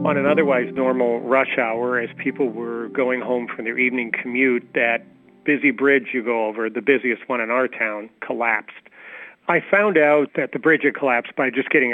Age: 40-59